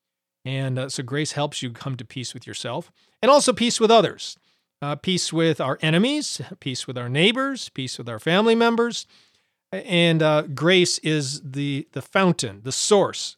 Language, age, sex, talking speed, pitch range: English, 40-59, male, 175 wpm, 130-175 Hz